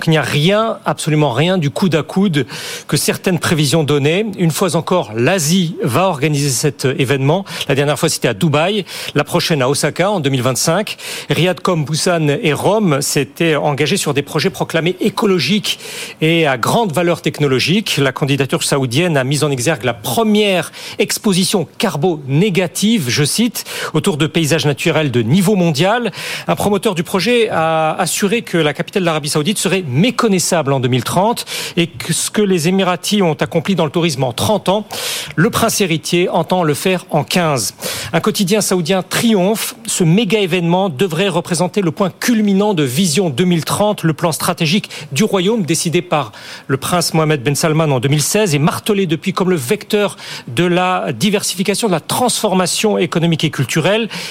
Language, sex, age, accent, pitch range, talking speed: French, male, 40-59, French, 155-200 Hz, 170 wpm